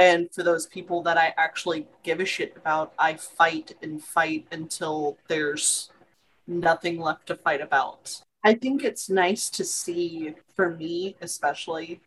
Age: 30-49